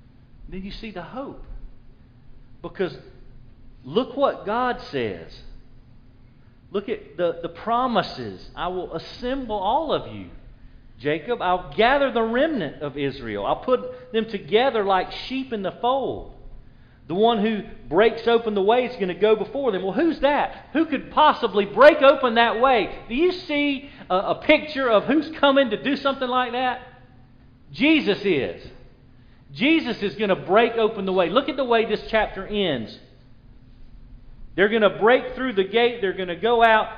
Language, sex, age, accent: English, male, 40-59, American